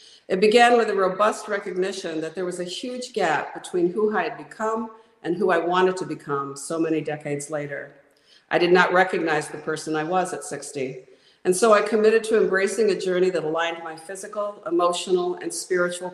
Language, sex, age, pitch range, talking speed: English, female, 50-69, 150-200 Hz, 195 wpm